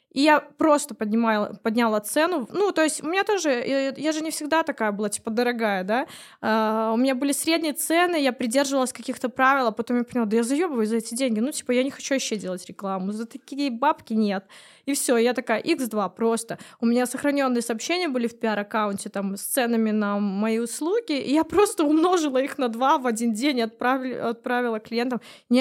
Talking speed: 200 wpm